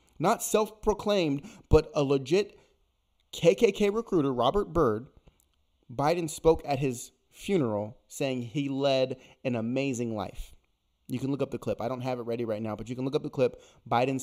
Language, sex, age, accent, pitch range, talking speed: English, male, 30-49, American, 115-150 Hz, 175 wpm